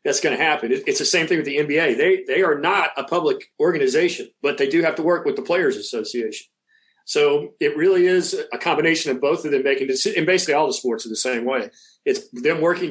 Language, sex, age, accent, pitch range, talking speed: English, male, 40-59, American, 320-425 Hz, 240 wpm